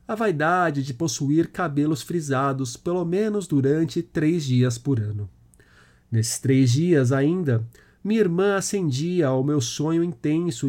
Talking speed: 135 wpm